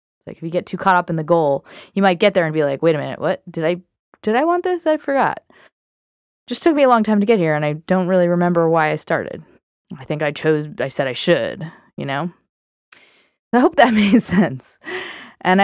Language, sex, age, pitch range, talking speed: English, female, 20-39, 160-205 Hz, 245 wpm